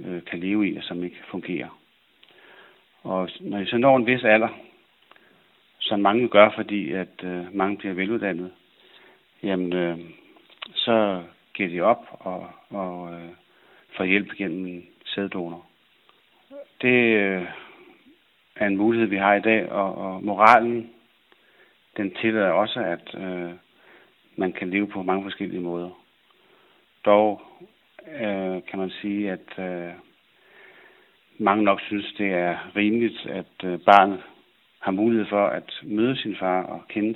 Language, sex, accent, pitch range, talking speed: Danish, male, native, 90-105 Hz, 135 wpm